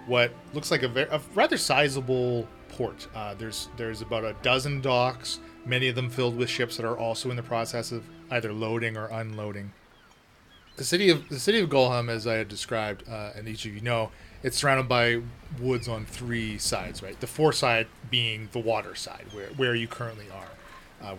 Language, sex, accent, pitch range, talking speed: English, male, American, 110-130 Hz, 200 wpm